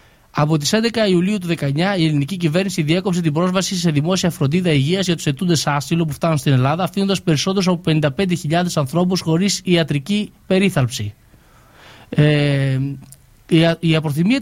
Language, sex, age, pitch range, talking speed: Greek, male, 20-39, 150-190 Hz, 145 wpm